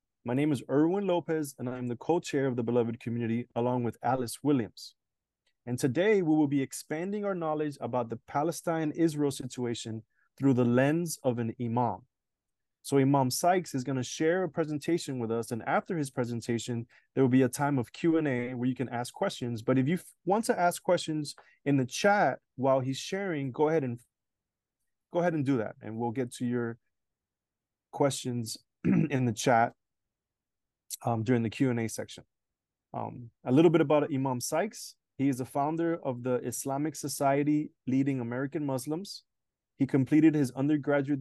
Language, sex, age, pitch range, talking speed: English, male, 20-39, 125-150 Hz, 170 wpm